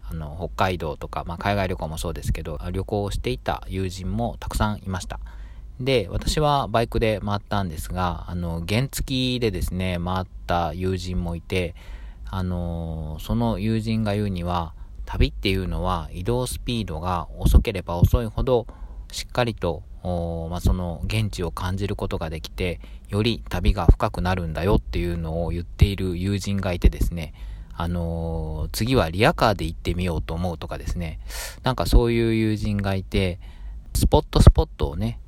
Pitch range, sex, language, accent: 85-100 Hz, male, Japanese, native